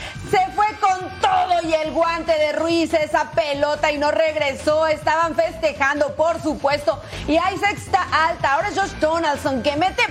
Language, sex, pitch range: Spanish, female, 300-360 Hz